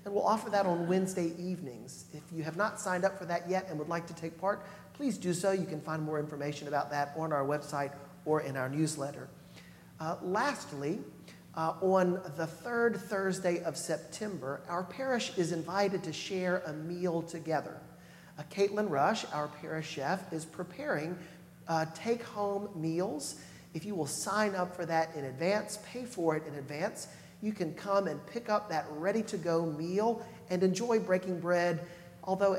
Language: English